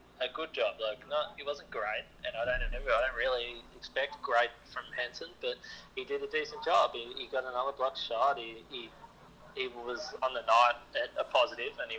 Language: English